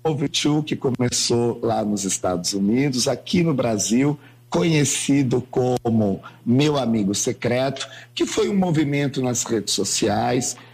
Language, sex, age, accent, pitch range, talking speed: Portuguese, male, 50-69, Brazilian, 115-145 Hz, 125 wpm